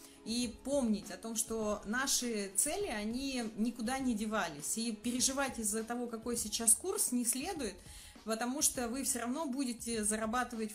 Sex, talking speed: female, 150 wpm